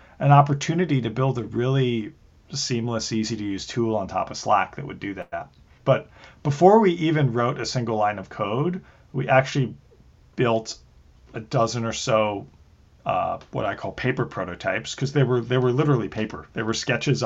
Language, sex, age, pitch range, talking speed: English, male, 40-59, 105-130 Hz, 165 wpm